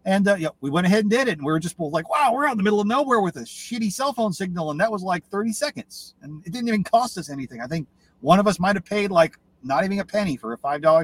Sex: male